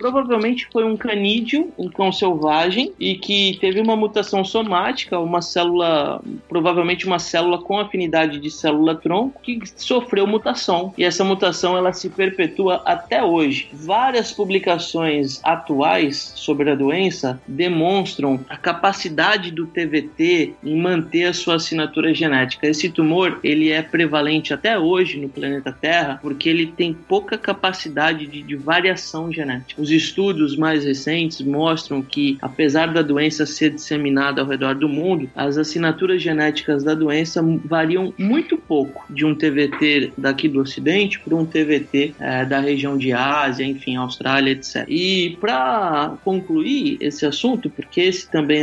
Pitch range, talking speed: 145-190 Hz, 140 wpm